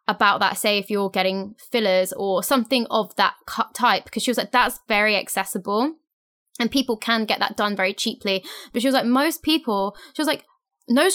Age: 10-29